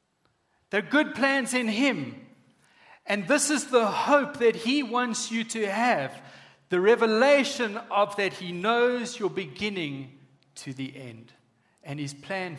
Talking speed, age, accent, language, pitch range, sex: 150 wpm, 40-59, South African, English, 145-225 Hz, male